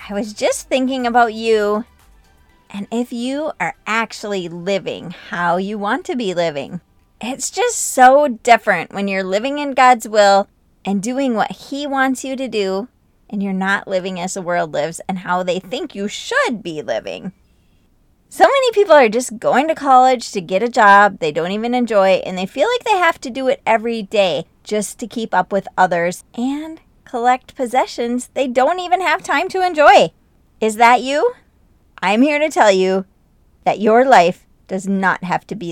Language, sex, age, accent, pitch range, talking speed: English, female, 30-49, American, 190-260 Hz, 185 wpm